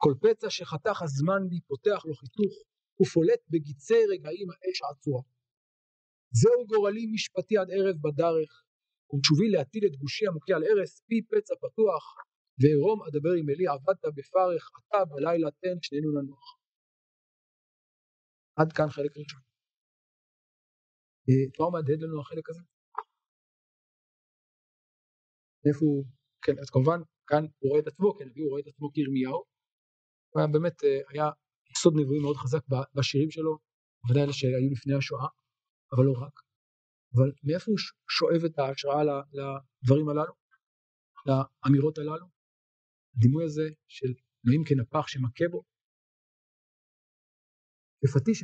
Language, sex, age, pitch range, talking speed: Hebrew, male, 50-69, 135-170 Hz, 125 wpm